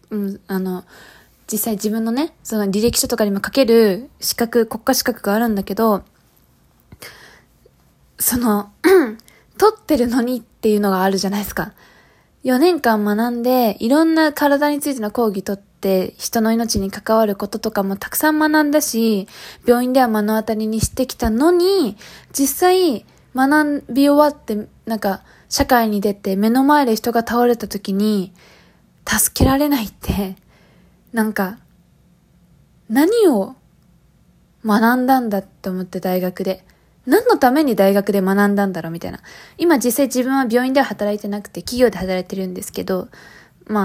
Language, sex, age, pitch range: Japanese, female, 20-39, 205-270 Hz